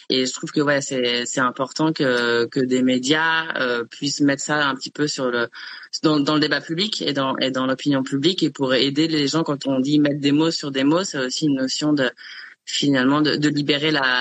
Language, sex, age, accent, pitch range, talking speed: French, female, 20-39, French, 130-150 Hz, 235 wpm